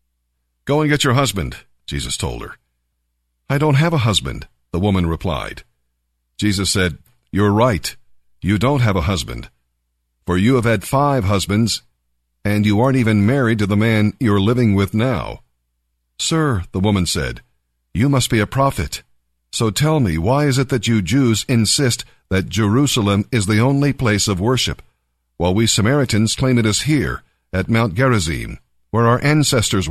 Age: 50-69